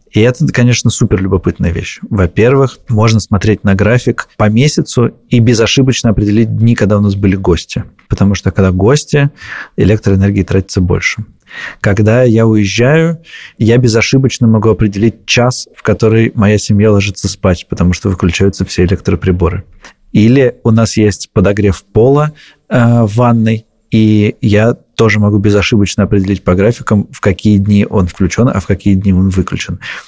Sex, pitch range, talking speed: male, 100-120 Hz, 150 wpm